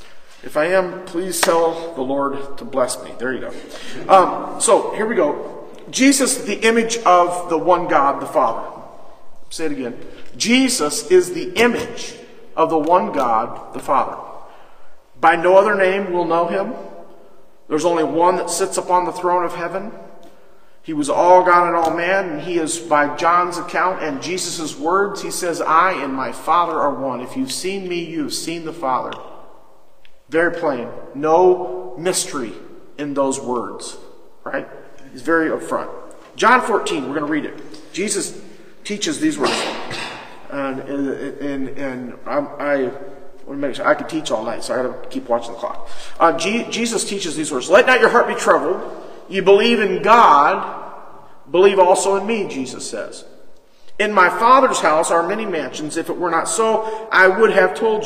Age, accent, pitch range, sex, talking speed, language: 50-69, American, 160-220 Hz, male, 175 wpm, English